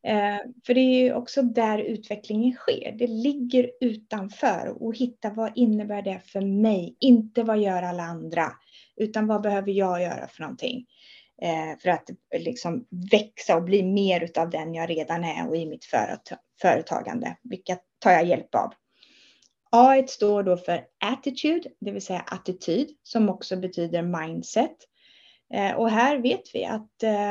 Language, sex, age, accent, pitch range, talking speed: Swedish, female, 30-49, native, 185-250 Hz, 150 wpm